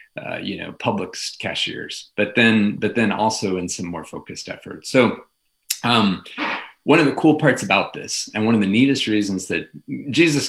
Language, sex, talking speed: English, male, 185 wpm